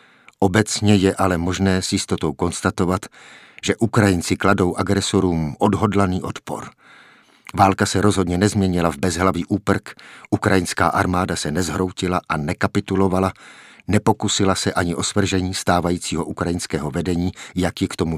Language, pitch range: Czech, 90-100 Hz